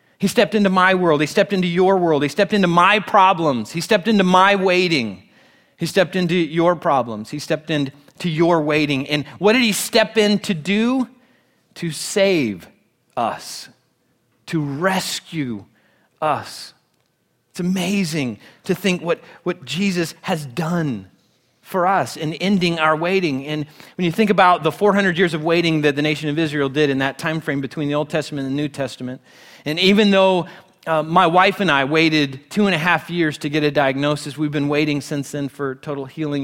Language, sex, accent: English, male, American